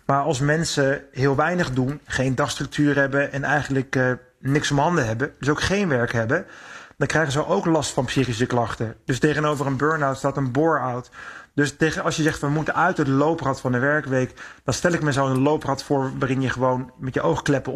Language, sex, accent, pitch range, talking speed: Dutch, male, Dutch, 130-155 Hz, 215 wpm